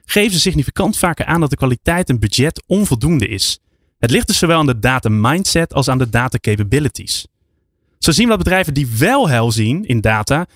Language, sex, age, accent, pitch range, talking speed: Dutch, male, 20-39, Dutch, 110-170 Hz, 195 wpm